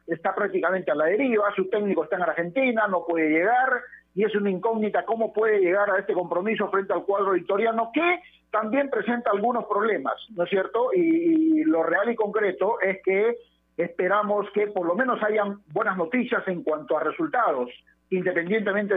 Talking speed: 175 wpm